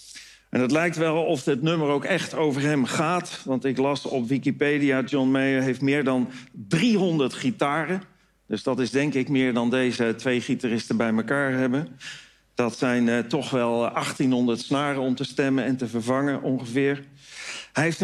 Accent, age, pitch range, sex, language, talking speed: Dutch, 50-69, 135-175 Hz, male, Dutch, 175 wpm